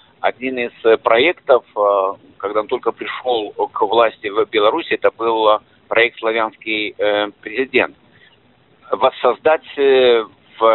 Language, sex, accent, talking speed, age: Ukrainian, male, native, 100 wpm, 50-69